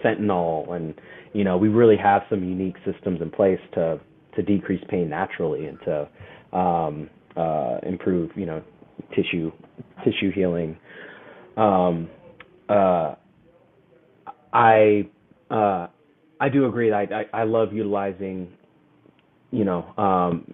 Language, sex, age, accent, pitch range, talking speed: English, male, 30-49, American, 90-105 Hz, 115 wpm